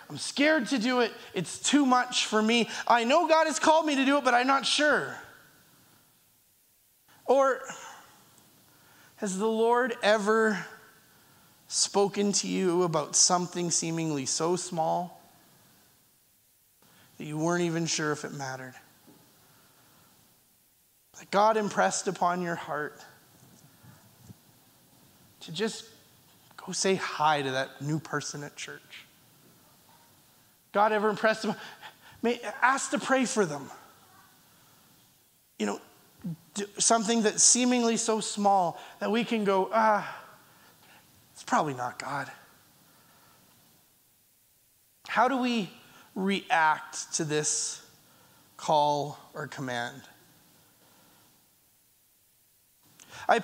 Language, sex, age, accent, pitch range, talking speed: English, male, 30-49, American, 165-235 Hz, 110 wpm